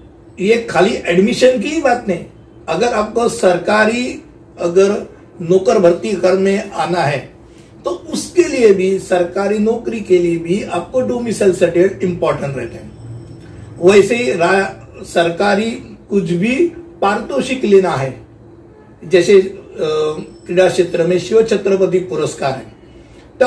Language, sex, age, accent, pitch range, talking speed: Hindi, male, 60-79, native, 175-235 Hz, 125 wpm